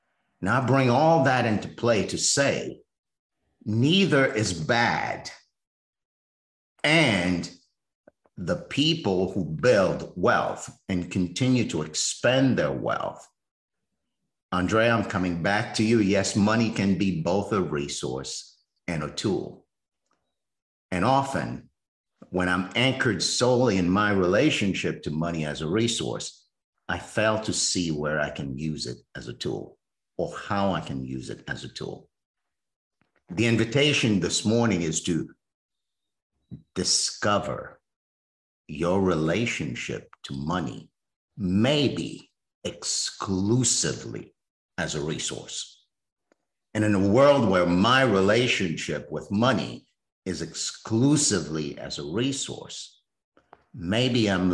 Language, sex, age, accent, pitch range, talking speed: English, male, 50-69, American, 85-115 Hz, 120 wpm